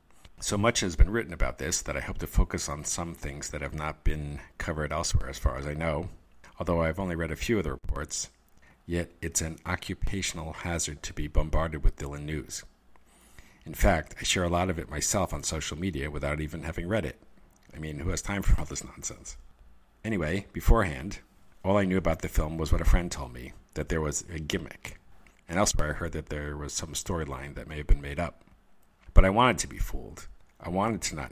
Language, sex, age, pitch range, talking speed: English, male, 50-69, 75-90 Hz, 220 wpm